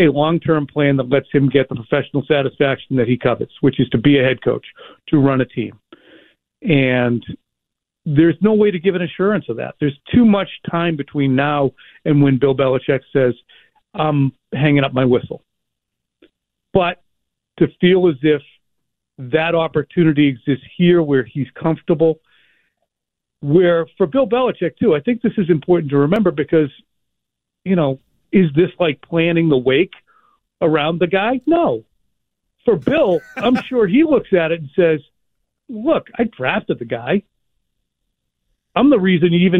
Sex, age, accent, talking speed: male, 50-69, American, 160 wpm